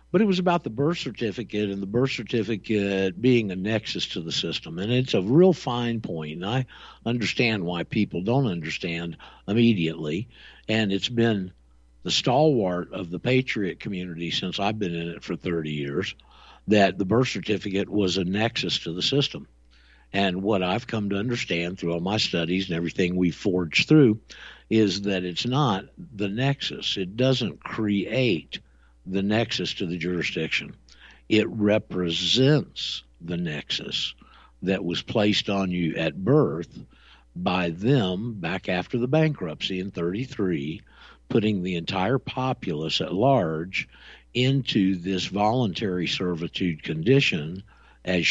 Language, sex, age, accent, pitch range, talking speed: English, male, 60-79, American, 85-115 Hz, 145 wpm